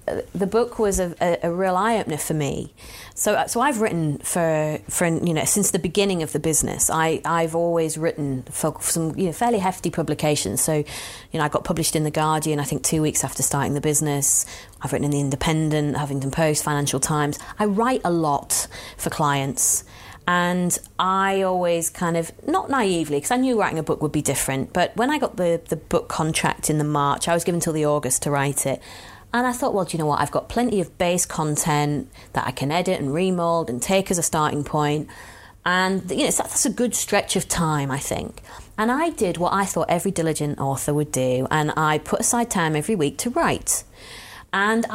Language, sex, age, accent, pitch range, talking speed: English, female, 30-49, British, 145-185 Hz, 215 wpm